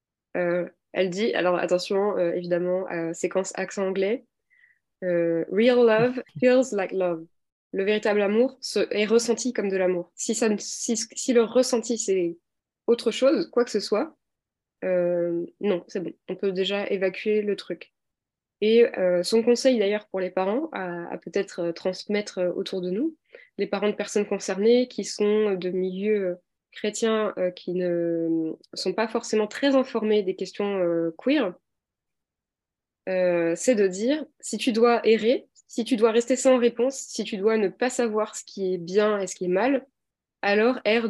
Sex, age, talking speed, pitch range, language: female, 20-39, 170 wpm, 185-235 Hz, French